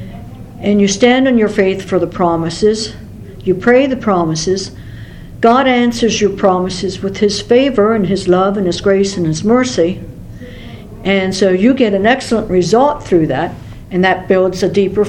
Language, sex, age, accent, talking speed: English, female, 60-79, American, 170 wpm